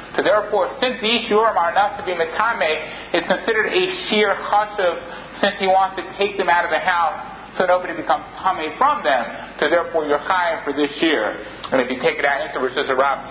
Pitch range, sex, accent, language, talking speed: 175-210 Hz, male, American, English, 220 wpm